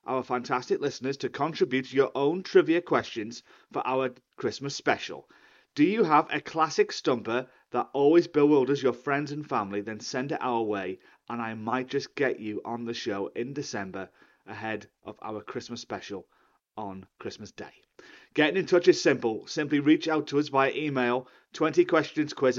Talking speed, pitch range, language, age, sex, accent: 165 wpm, 120-150 Hz, English, 30-49, male, British